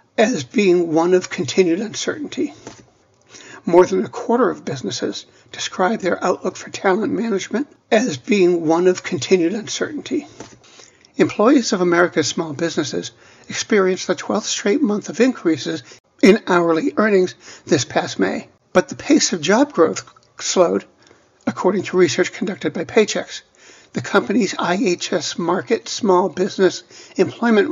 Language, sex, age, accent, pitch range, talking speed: English, male, 60-79, American, 175-220 Hz, 135 wpm